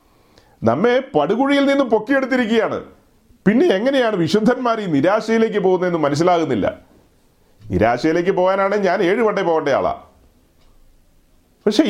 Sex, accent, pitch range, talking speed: male, native, 210-255 Hz, 90 wpm